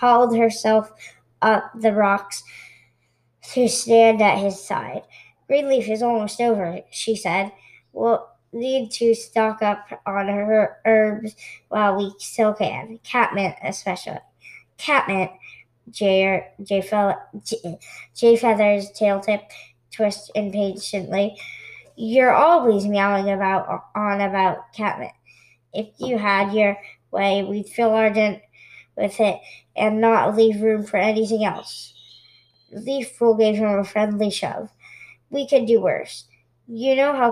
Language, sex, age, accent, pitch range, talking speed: English, male, 20-39, American, 195-230 Hz, 125 wpm